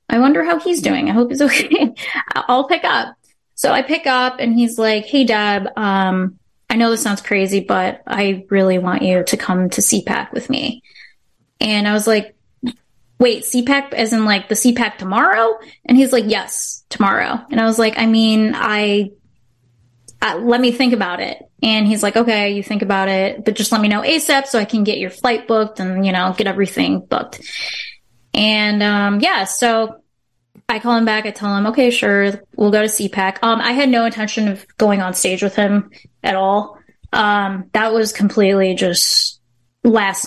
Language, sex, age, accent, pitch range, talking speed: English, female, 20-39, American, 200-240 Hz, 195 wpm